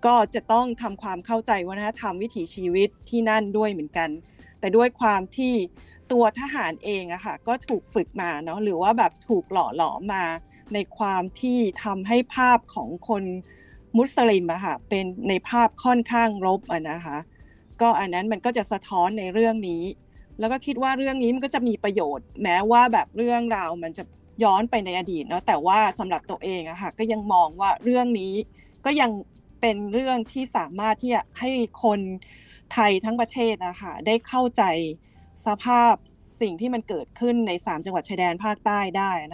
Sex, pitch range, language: female, 185-235 Hz, Thai